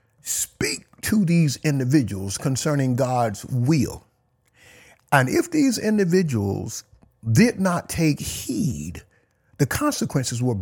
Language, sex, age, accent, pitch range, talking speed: English, male, 50-69, American, 105-140 Hz, 100 wpm